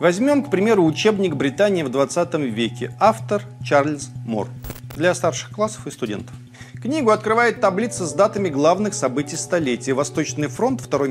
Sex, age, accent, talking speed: male, 40-59, native, 145 wpm